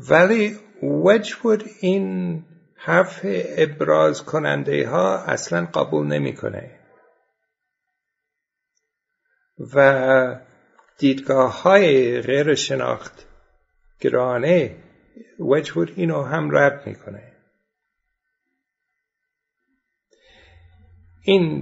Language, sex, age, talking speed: Persian, male, 60-79, 55 wpm